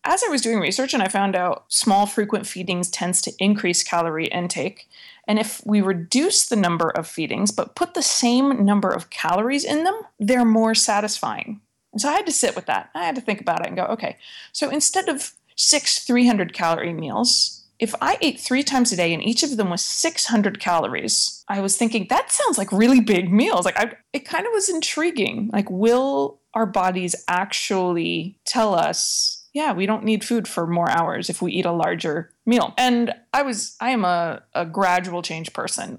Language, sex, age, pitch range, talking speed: English, female, 20-39, 180-245 Hz, 200 wpm